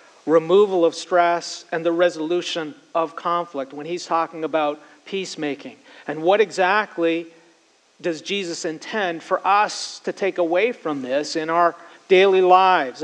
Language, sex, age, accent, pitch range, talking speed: English, male, 40-59, American, 160-190 Hz, 140 wpm